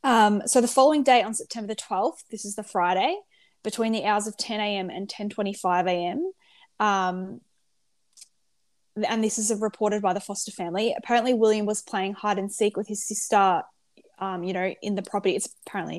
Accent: Australian